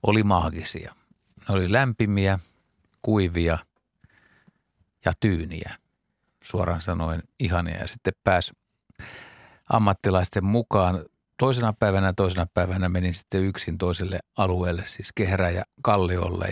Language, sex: Finnish, male